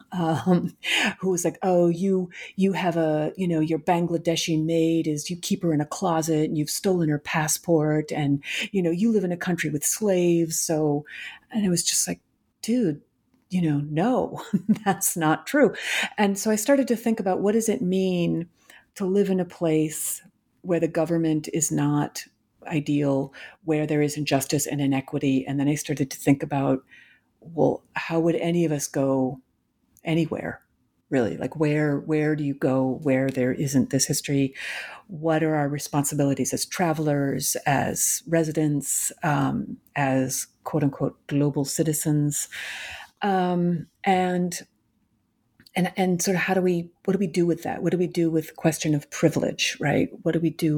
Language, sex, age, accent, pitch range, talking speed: English, female, 50-69, American, 150-180 Hz, 175 wpm